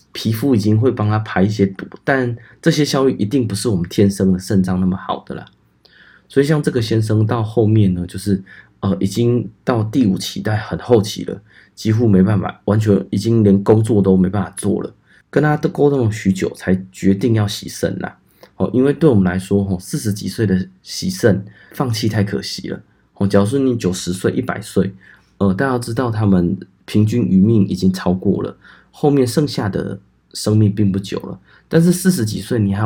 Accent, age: native, 20-39